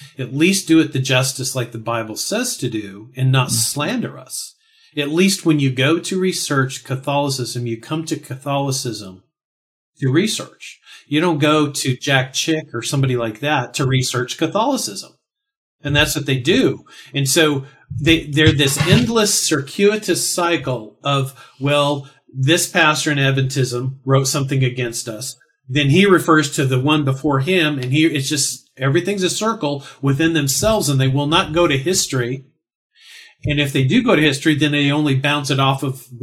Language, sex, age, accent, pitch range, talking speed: English, male, 40-59, American, 135-165 Hz, 170 wpm